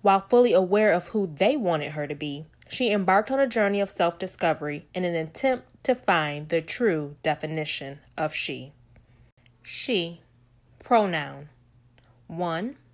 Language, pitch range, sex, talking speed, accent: English, 150-210 Hz, female, 140 wpm, American